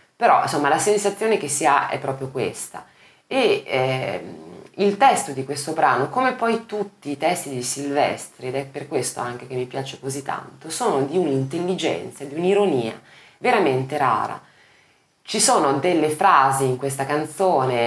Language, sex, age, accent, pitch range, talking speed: Italian, female, 20-39, native, 130-160 Hz, 160 wpm